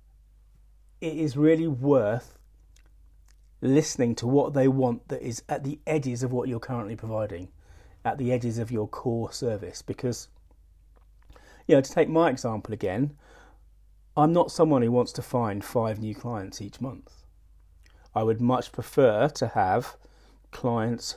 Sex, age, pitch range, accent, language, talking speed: male, 40-59, 100-130 Hz, British, English, 150 wpm